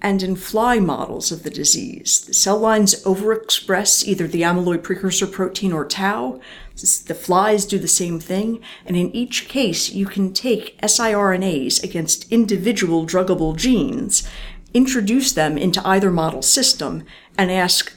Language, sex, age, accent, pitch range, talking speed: English, female, 50-69, American, 175-215 Hz, 145 wpm